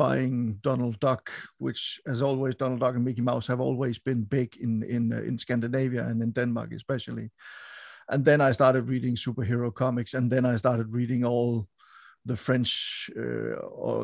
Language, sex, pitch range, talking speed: Danish, male, 120-135 Hz, 175 wpm